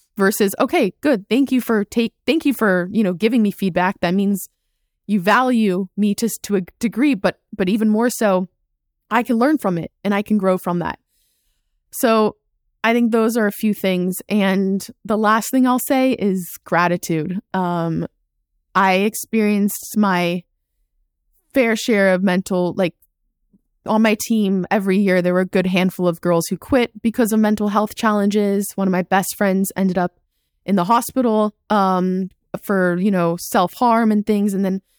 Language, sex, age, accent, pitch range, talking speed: English, female, 20-39, American, 185-220 Hz, 180 wpm